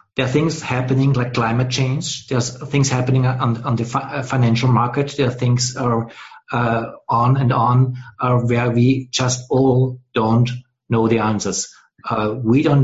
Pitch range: 120-140 Hz